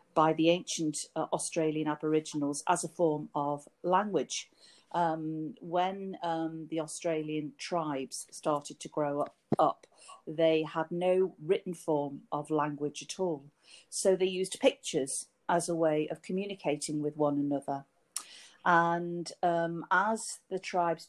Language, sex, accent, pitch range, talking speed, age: English, female, British, 155-180 Hz, 135 wpm, 40-59